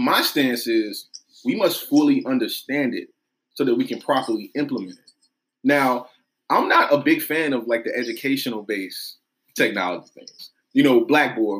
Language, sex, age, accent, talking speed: English, male, 20-39, American, 160 wpm